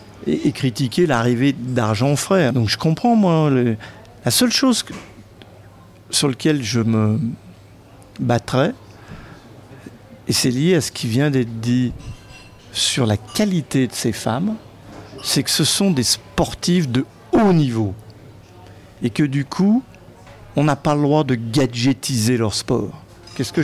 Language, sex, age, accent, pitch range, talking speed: French, male, 50-69, French, 115-155 Hz, 145 wpm